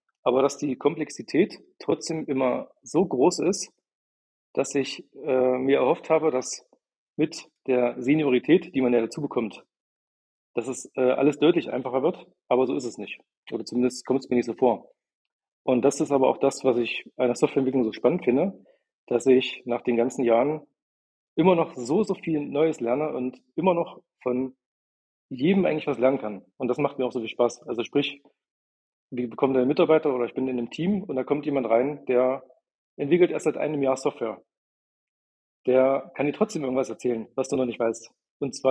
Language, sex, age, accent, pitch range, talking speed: German, male, 40-59, German, 120-145 Hz, 195 wpm